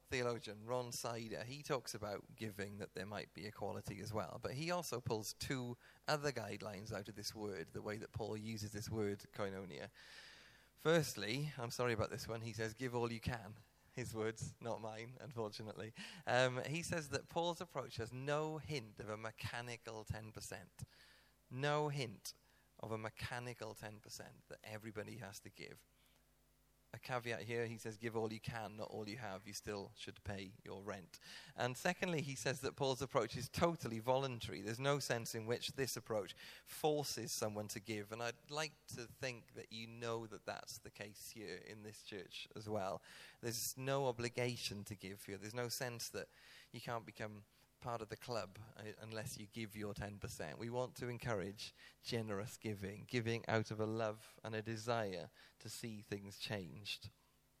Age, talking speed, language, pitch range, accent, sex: 30-49, 180 wpm, English, 105-125 Hz, British, male